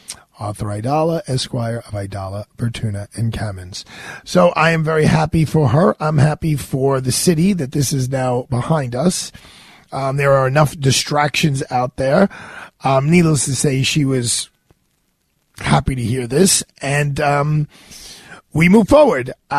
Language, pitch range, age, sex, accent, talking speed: English, 130-160 Hz, 40-59, male, American, 145 wpm